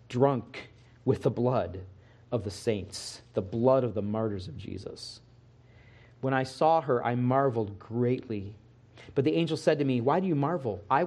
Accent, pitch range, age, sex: American, 120-165 Hz, 40-59, male